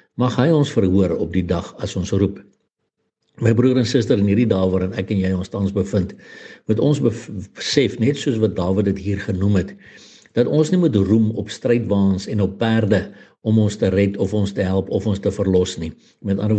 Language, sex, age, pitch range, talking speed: English, male, 60-79, 100-110 Hz, 215 wpm